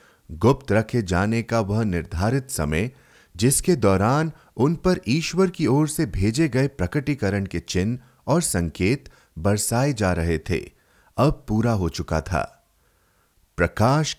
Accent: native